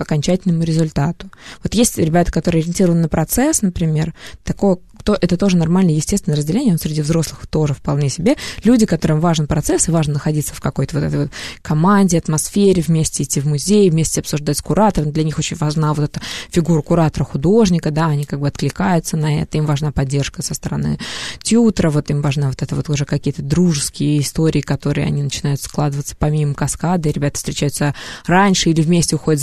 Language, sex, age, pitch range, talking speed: Russian, female, 20-39, 150-175 Hz, 180 wpm